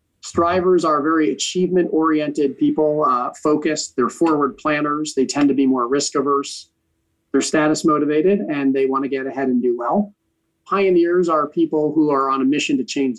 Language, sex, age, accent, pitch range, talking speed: English, male, 40-59, American, 130-160 Hz, 180 wpm